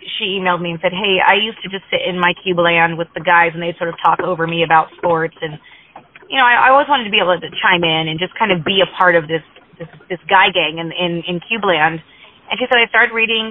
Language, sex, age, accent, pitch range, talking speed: English, female, 30-49, American, 180-225 Hz, 275 wpm